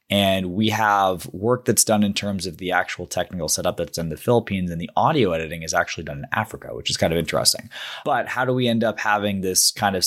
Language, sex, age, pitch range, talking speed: English, male, 20-39, 90-110 Hz, 245 wpm